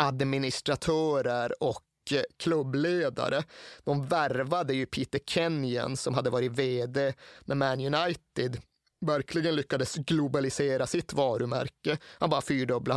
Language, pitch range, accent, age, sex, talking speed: Swedish, 130-150 Hz, native, 30-49, male, 105 wpm